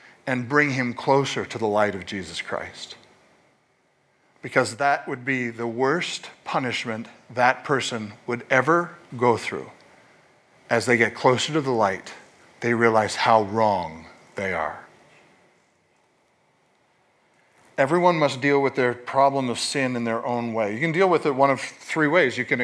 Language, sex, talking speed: English, male, 155 wpm